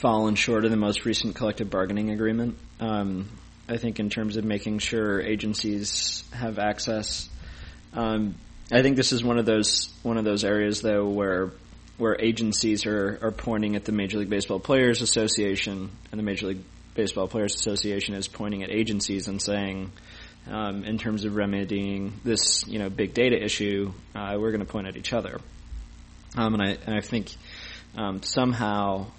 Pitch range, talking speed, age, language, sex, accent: 100-110 Hz, 175 wpm, 20-39, English, male, American